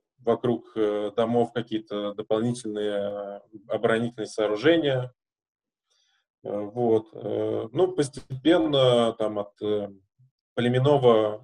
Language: Russian